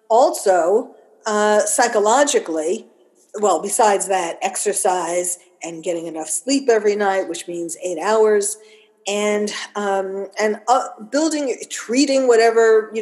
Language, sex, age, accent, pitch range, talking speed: English, female, 50-69, American, 175-215 Hz, 115 wpm